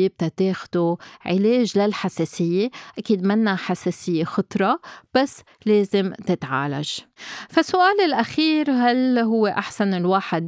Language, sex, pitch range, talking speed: Arabic, female, 175-225 Hz, 90 wpm